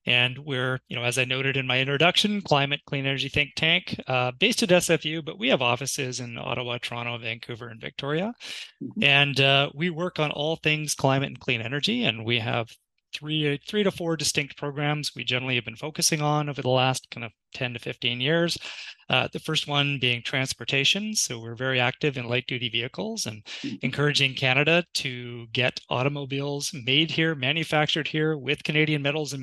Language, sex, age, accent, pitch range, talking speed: English, male, 30-49, American, 125-155 Hz, 190 wpm